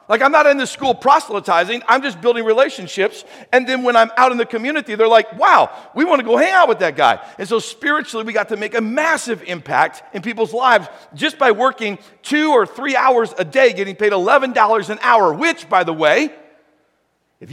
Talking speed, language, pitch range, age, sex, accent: 215 wpm, English, 175-250 Hz, 50-69, male, American